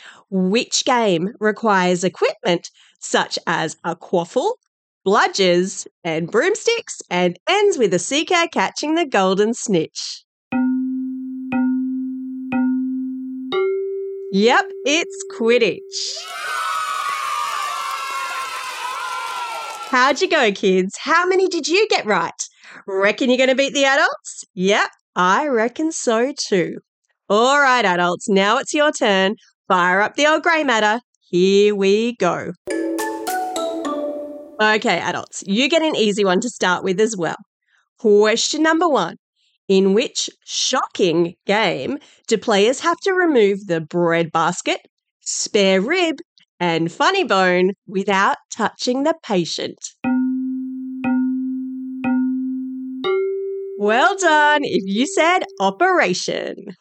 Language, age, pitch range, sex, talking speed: English, 30-49, 195-315 Hz, female, 110 wpm